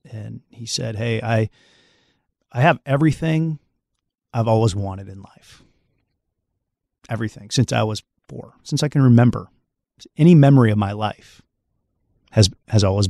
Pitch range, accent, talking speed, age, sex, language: 105-120 Hz, American, 135 wpm, 30-49, male, English